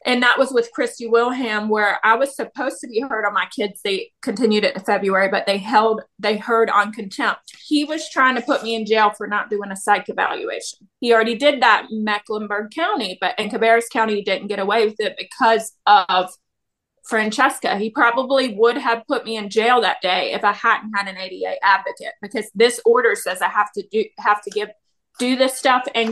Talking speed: 215 wpm